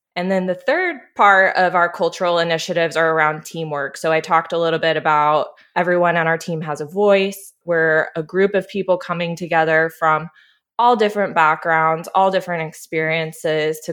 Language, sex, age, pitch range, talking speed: English, female, 20-39, 160-185 Hz, 175 wpm